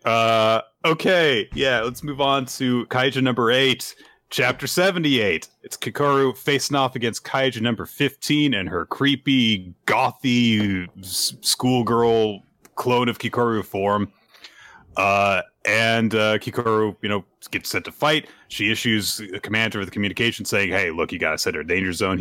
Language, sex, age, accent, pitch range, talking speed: English, male, 30-49, American, 100-130 Hz, 150 wpm